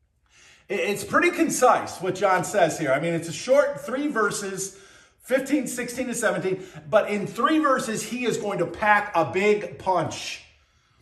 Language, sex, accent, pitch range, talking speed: English, male, American, 170-225 Hz, 165 wpm